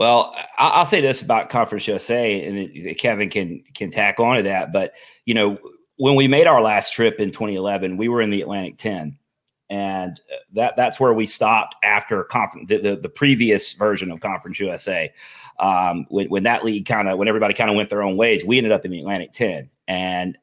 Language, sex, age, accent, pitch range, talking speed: English, male, 30-49, American, 95-120 Hz, 210 wpm